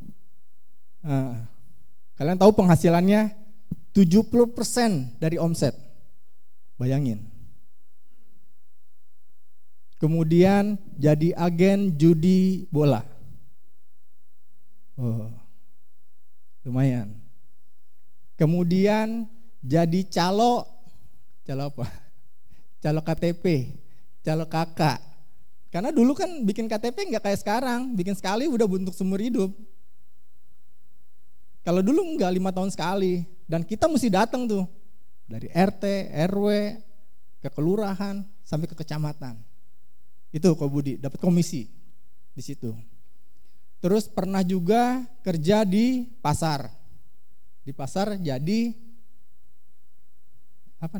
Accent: native